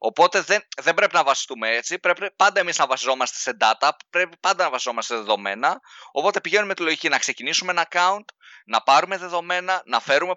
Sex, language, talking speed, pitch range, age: male, Greek, 195 wpm, 140-200 Hz, 20-39